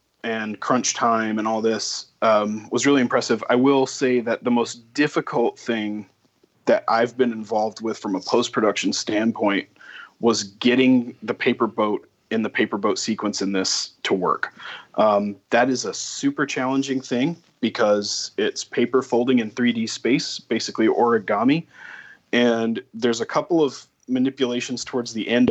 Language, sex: English, male